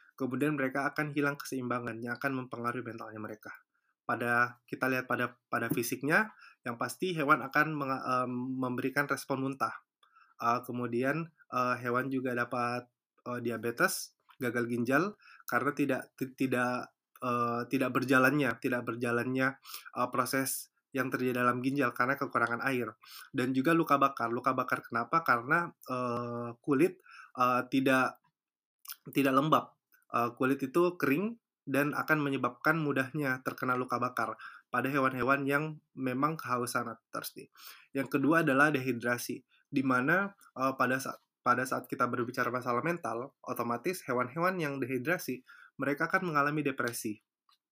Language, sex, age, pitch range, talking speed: Indonesian, male, 20-39, 120-140 Hz, 120 wpm